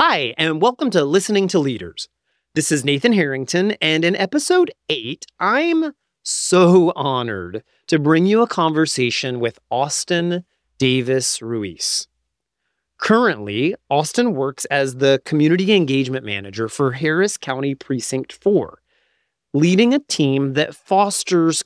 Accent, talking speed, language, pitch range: American, 120 wpm, English, 135-190 Hz